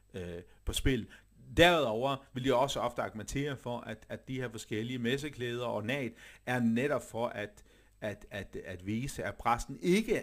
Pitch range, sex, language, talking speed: 105-130 Hz, male, Danish, 165 wpm